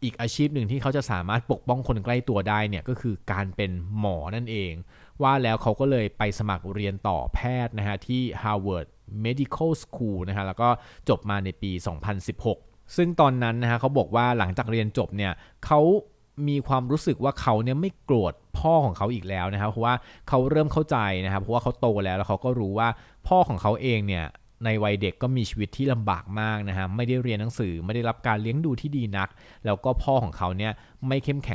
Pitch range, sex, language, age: 100-125 Hz, male, Thai, 20-39